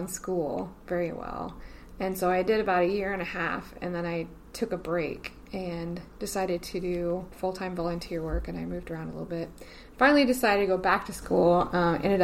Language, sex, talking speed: English, female, 205 wpm